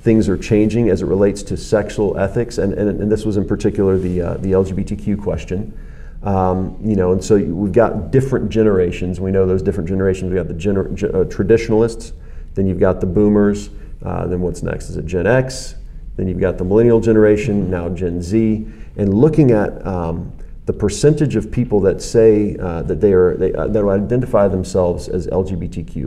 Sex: male